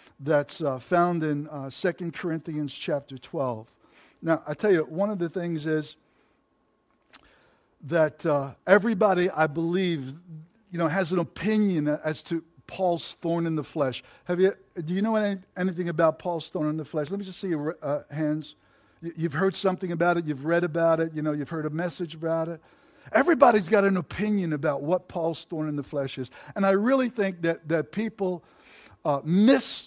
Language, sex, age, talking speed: English, male, 50-69, 185 wpm